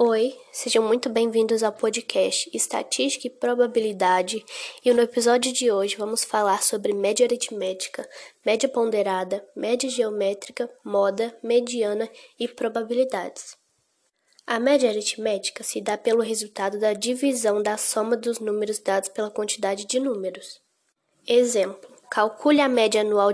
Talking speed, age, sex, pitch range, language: 130 wpm, 10-29, female, 210-255 Hz, Portuguese